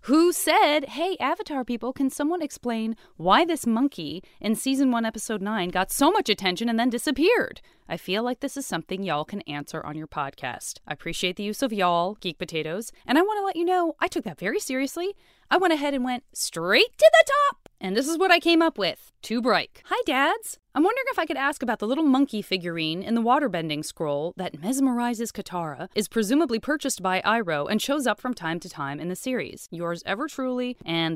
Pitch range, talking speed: 185-300 Hz, 220 wpm